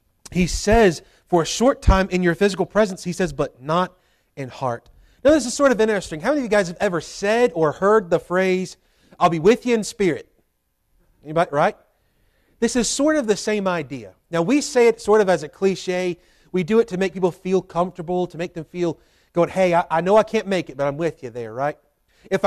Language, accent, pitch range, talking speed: English, American, 175-235 Hz, 230 wpm